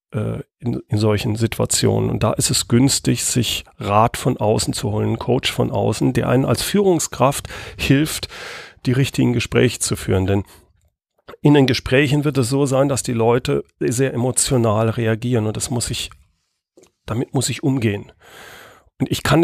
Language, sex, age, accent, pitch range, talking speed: German, male, 40-59, German, 115-135 Hz, 165 wpm